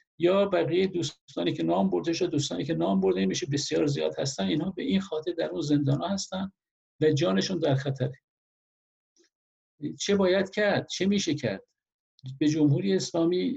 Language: Persian